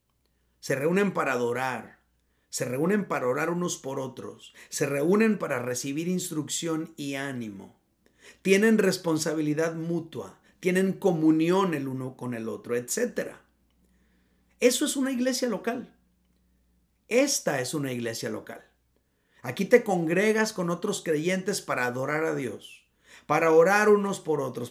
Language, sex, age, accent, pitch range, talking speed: Spanish, male, 50-69, Mexican, 120-195 Hz, 130 wpm